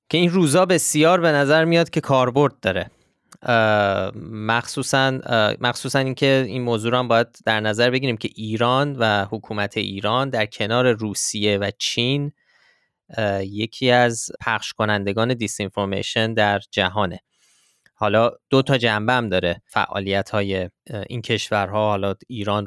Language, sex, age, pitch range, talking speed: Persian, male, 20-39, 110-140 Hz, 135 wpm